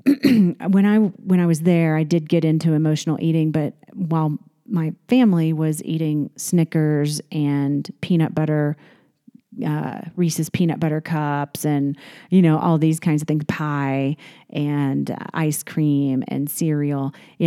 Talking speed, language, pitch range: 150 wpm, English, 150-180 Hz